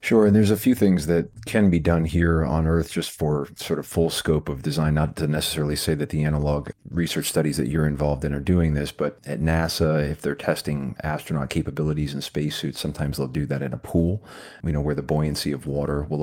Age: 40-59